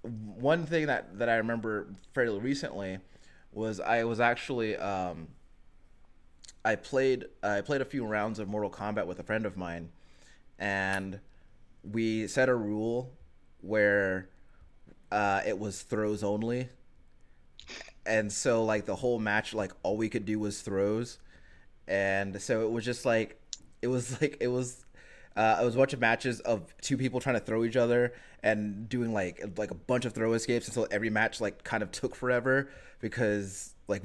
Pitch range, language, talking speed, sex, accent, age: 100-120 Hz, English, 170 wpm, male, American, 20-39